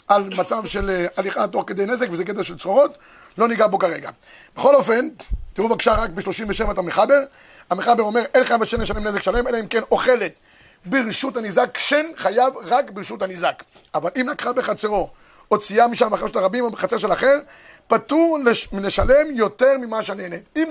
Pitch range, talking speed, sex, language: 215-275 Hz, 175 wpm, male, Hebrew